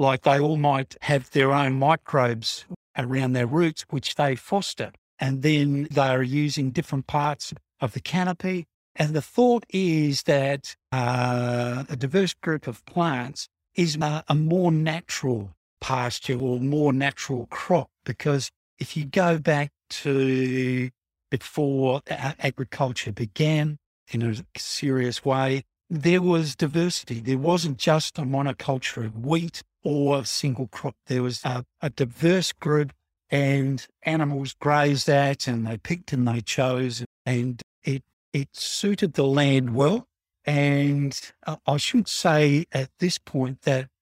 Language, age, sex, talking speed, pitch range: English, 60-79, male, 140 wpm, 130-155 Hz